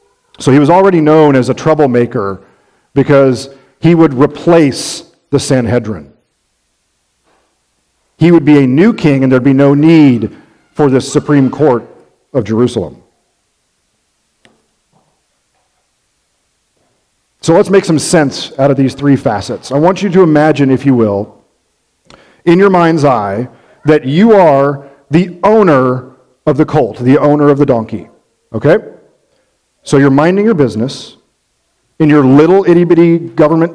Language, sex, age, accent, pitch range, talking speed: English, male, 40-59, American, 130-175 Hz, 140 wpm